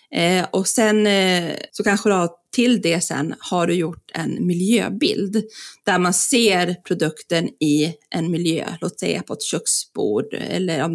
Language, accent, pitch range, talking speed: Swedish, native, 175-220 Hz, 150 wpm